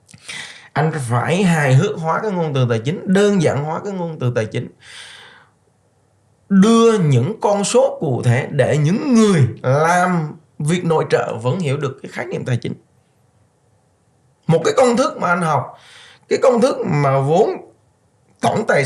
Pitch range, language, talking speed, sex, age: 125-180 Hz, Vietnamese, 170 wpm, male, 20-39